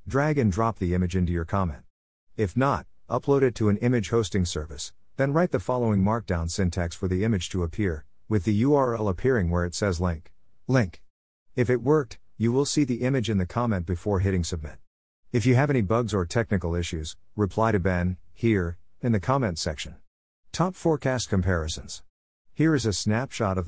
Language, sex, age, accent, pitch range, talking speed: English, male, 50-69, American, 90-115 Hz, 190 wpm